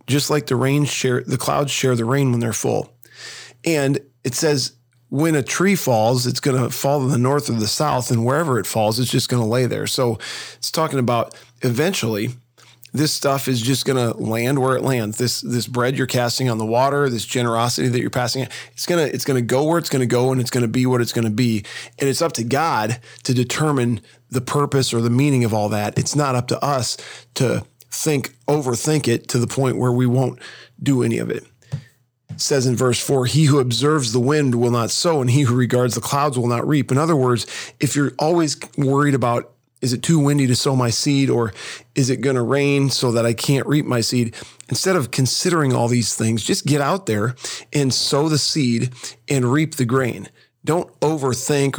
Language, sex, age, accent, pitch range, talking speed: English, male, 40-59, American, 120-140 Hz, 220 wpm